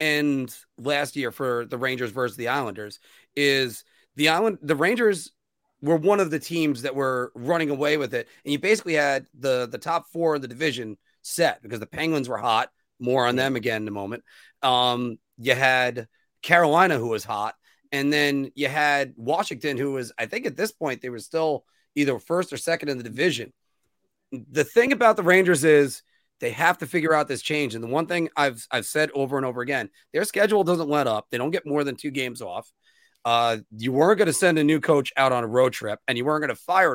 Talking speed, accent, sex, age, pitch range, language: 220 wpm, American, male, 30-49, 130-165 Hz, English